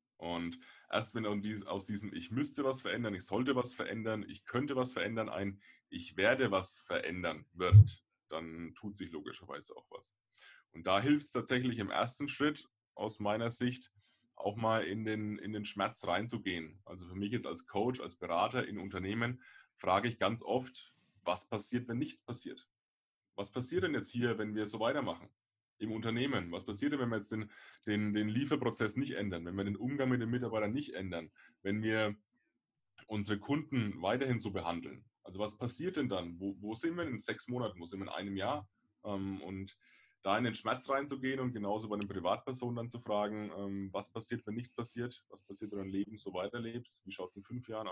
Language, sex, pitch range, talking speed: German, male, 100-120 Hz, 195 wpm